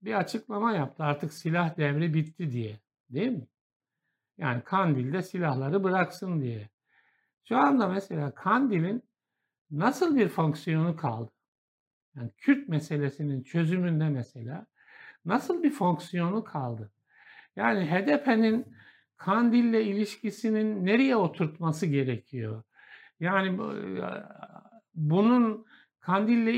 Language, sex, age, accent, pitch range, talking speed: Turkish, male, 60-79, native, 155-225 Hz, 95 wpm